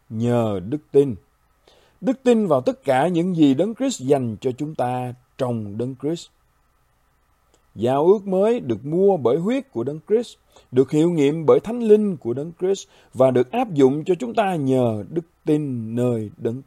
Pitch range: 115-175 Hz